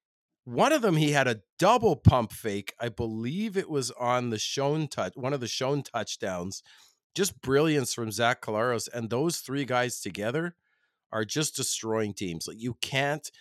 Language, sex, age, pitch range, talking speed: English, male, 40-59, 120-175 Hz, 175 wpm